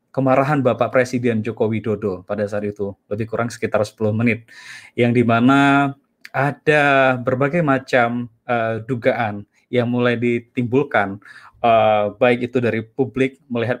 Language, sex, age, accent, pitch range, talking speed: Indonesian, male, 20-39, native, 120-140 Hz, 125 wpm